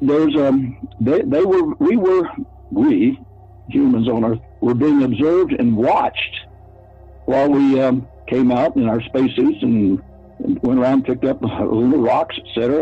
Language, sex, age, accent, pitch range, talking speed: English, male, 60-79, American, 95-150 Hz, 160 wpm